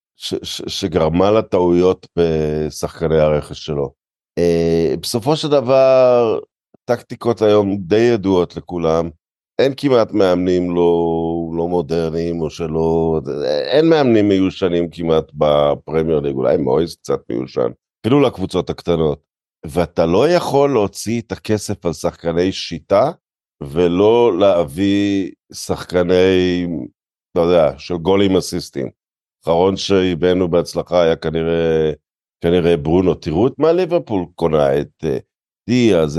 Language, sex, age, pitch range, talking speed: Hebrew, male, 50-69, 85-110 Hz, 115 wpm